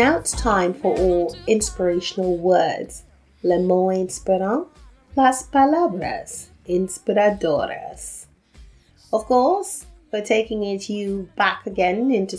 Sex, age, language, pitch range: female, 30-49, English, 180-240 Hz